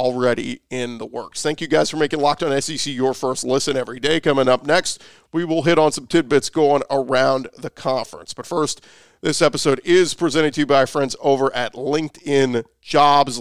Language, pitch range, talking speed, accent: English, 130-150 Hz, 195 wpm, American